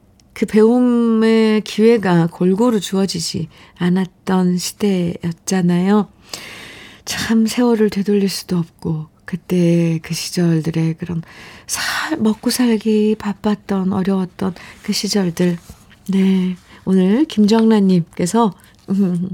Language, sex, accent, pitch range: Korean, female, native, 180-225 Hz